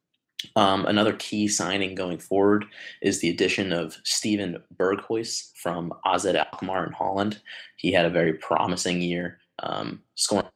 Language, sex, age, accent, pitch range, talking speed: English, male, 20-39, American, 90-105 Hz, 140 wpm